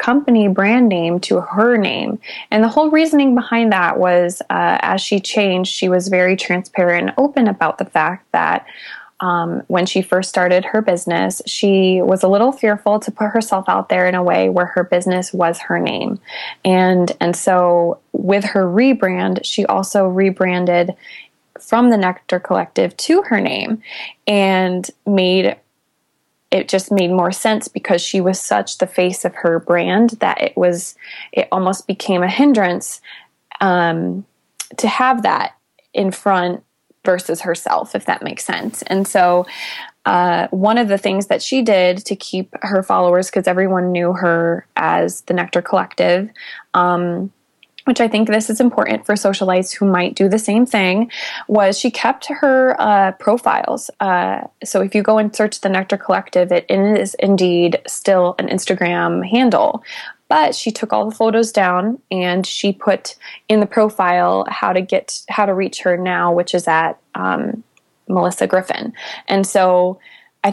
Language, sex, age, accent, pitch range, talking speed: English, female, 20-39, American, 180-215 Hz, 165 wpm